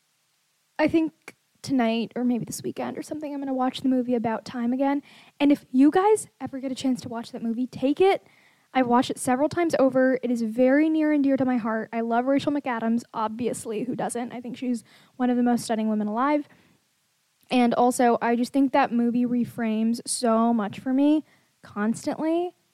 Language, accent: English, American